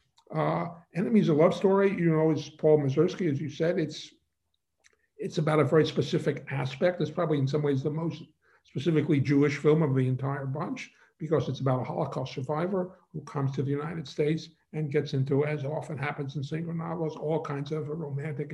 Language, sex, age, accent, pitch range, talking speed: English, male, 50-69, American, 145-170 Hz, 190 wpm